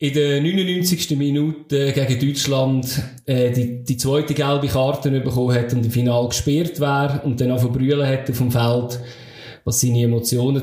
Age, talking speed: 20-39, 175 wpm